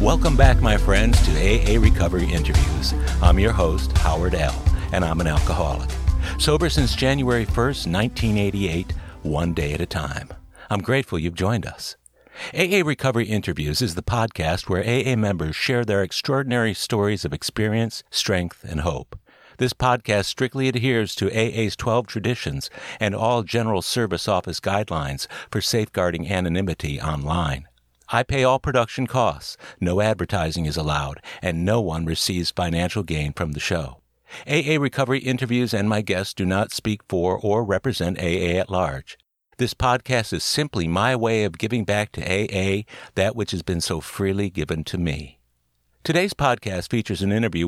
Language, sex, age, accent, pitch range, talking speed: English, male, 60-79, American, 85-115 Hz, 160 wpm